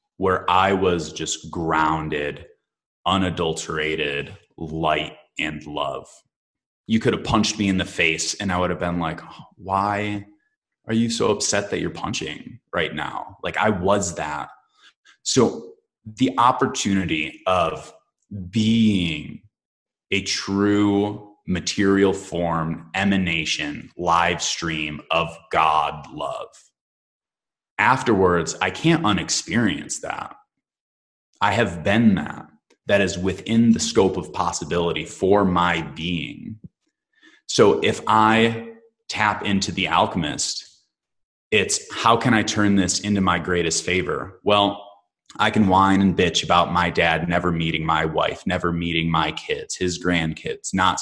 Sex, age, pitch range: male, 20-39, 85-105 Hz